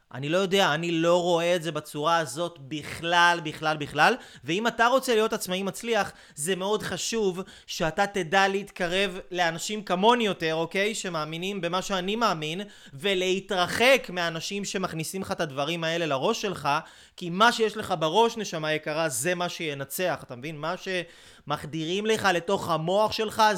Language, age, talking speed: Hebrew, 20-39, 155 wpm